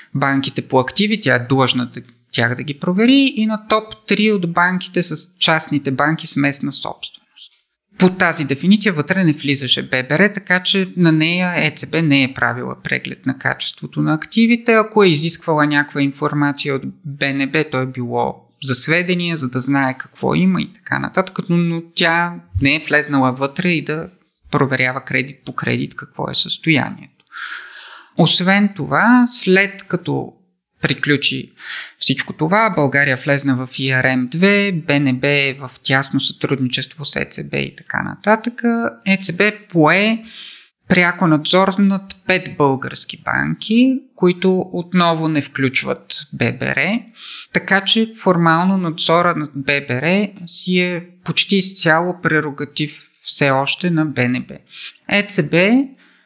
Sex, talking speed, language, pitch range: male, 135 wpm, Bulgarian, 140-190 Hz